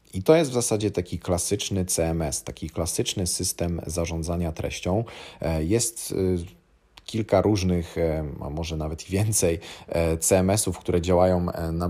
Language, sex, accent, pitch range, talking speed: Polish, male, native, 80-95 Hz, 120 wpm